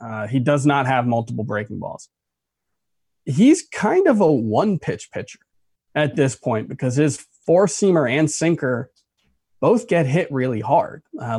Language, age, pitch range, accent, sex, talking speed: English, 20-39, 125-160 Hz, American, male, 160 wpm